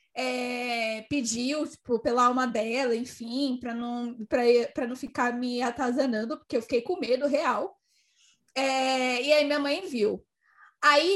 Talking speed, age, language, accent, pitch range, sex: 150 wpm, 20-39, Portuguese, Brazilian, 255-305 Hz, female